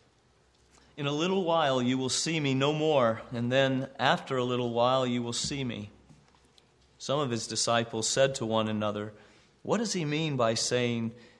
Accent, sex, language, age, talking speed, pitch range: American, male, English, 50-69, 180 wpm, 115-145 Hz